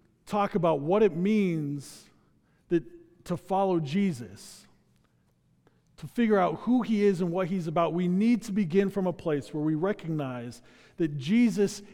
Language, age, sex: English, 40-59, male